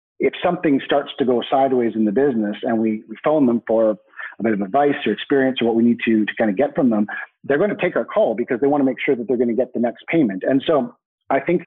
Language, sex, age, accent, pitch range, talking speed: English, male, 40-59, American, 115-130 Hz, 290 wpm